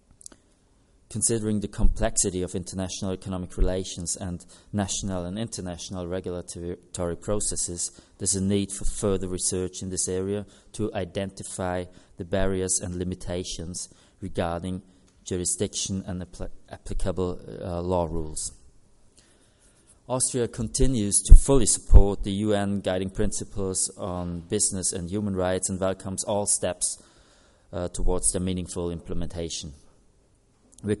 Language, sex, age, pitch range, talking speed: English, male, 30-49, 90-100 Hz, 115 wpm